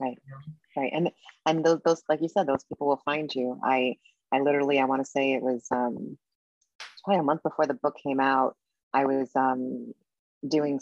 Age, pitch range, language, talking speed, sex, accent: 30-49, 130-150 Hz, English, 200 wpm, female, American